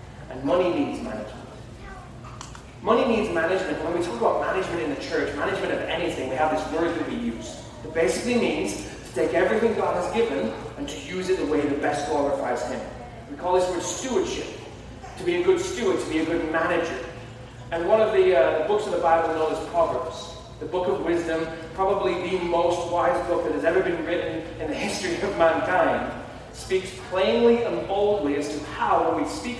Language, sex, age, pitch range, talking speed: English, male, 30-49, 130-185 Hz, 205 wpm